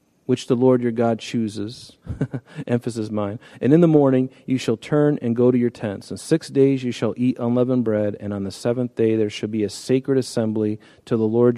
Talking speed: 220 wpm